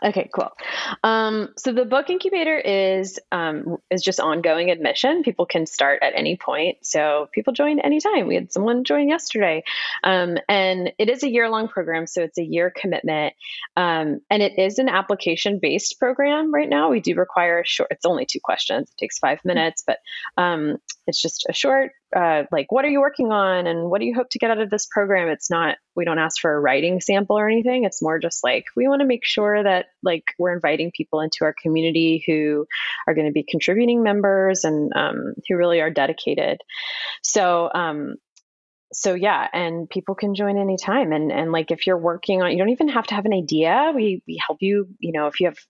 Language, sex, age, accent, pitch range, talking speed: English, female, 30-49, American, 165-225 Hz, 215 wpm